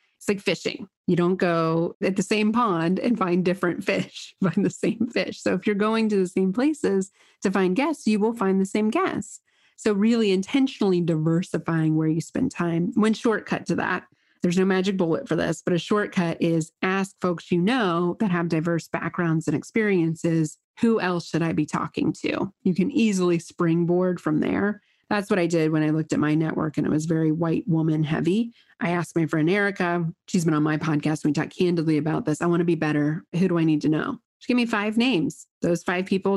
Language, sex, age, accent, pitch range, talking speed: English, female, 30-49, American, 165-205 Hz, 215 wpm